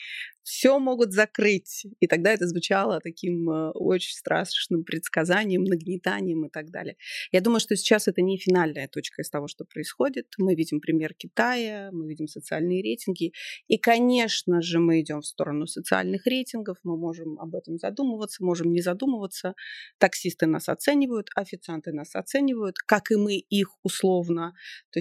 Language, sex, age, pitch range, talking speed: Russian, female, 30-49, 170-215 Hz, 155 wpm